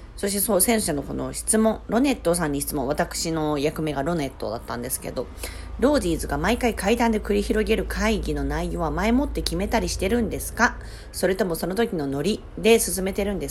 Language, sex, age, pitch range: Japanese, female, 40-59, 135-200 Hz